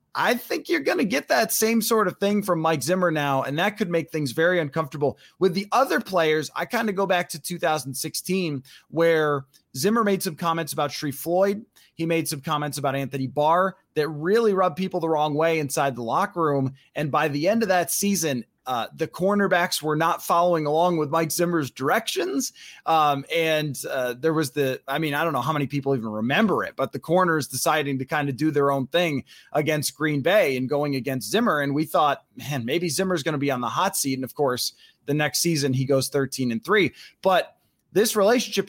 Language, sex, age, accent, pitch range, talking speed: English, male, 30-49, American, 145-195 Hz, 215 wpm